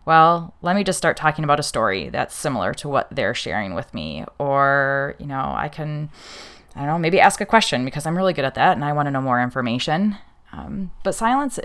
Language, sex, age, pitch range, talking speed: English, female, 20-39, 140-185 Hz, 230 wpm